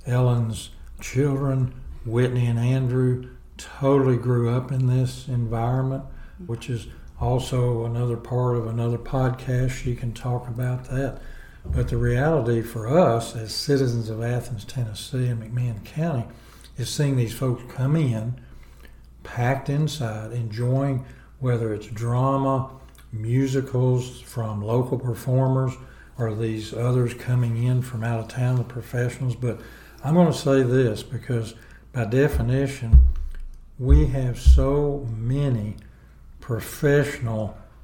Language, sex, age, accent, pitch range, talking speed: English, male, 60-79, American, 110-130 Hz, 125 wpm